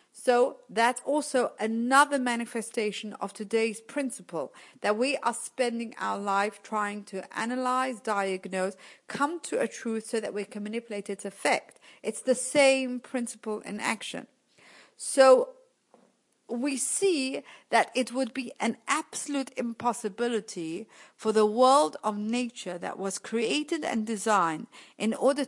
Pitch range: 210-255 Hz